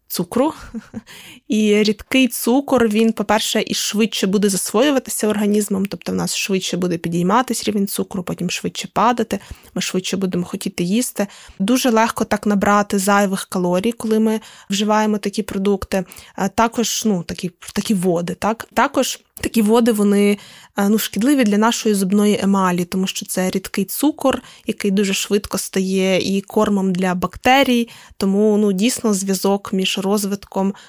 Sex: female